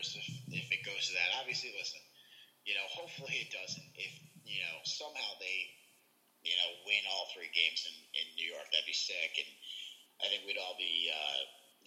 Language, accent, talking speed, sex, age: English, American, 190 wpm, male, 30-49